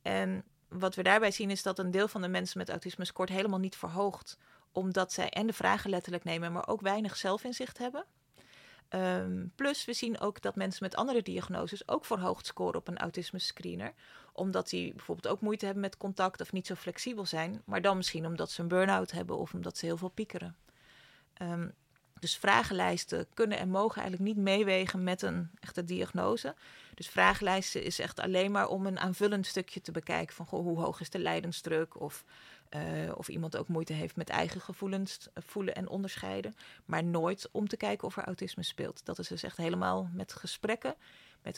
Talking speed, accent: 195 wpm, Dutch